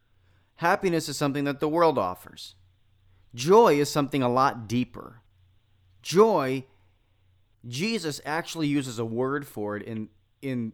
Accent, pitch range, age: American, 105-160 Hz, 30-49